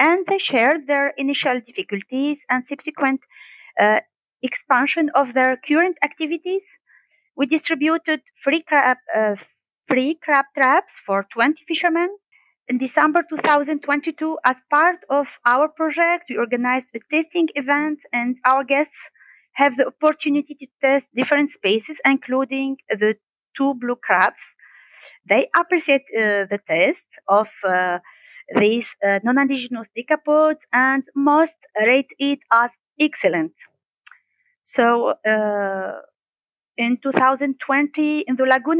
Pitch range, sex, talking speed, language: 245-310 Hz, female, 120 wpm, English